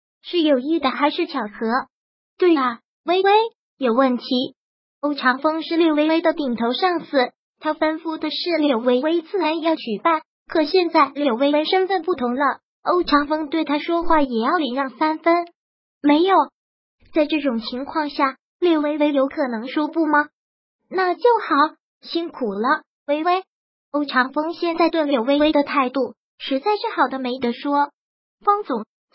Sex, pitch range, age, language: male, 270-335 Hz, 20-39, Chinese